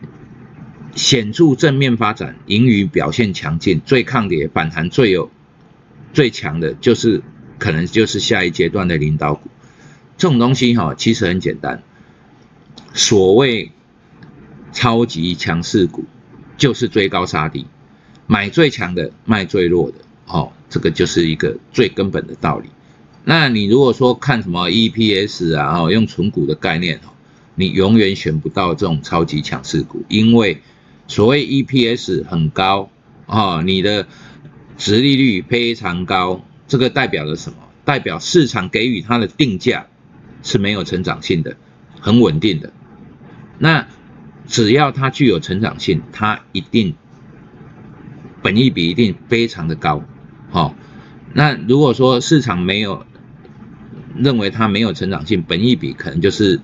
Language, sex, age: Chinese, male, 50-69